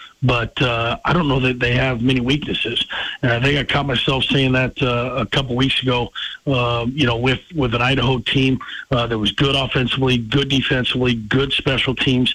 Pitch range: 120-135 Hz